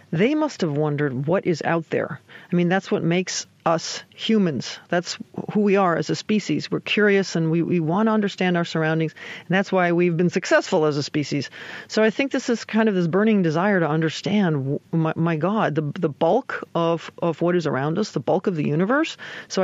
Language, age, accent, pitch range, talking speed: English, 40-59, American, 165-205 Hz, 215 wpm